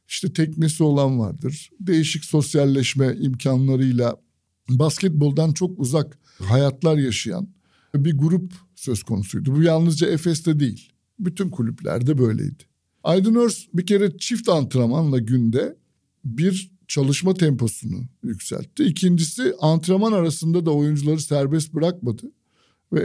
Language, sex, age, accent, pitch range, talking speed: Turkish, male, 60-79, native, 130-175 Hz, 105 wpm